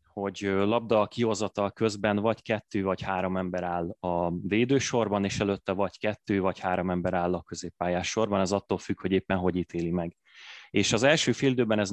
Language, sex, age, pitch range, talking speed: Hungarian, male, 20-39, 95-110 Hz, 185 wpm